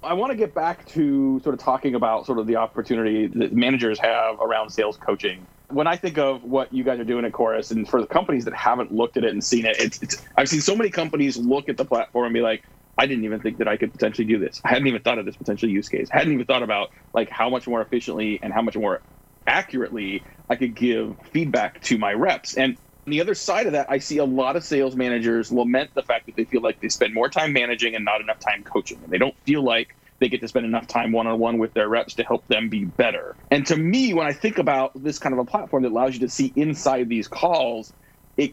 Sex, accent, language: male, American, English